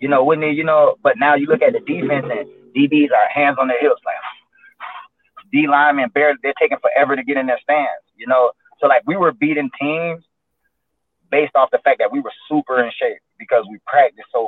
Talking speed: 220 wpm